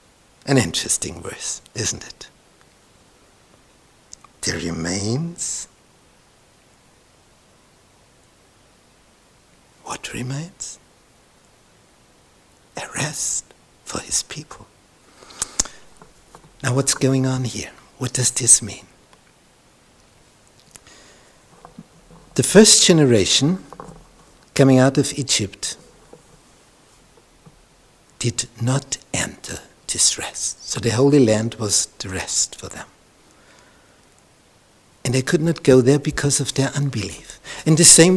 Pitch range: 115-145 Hz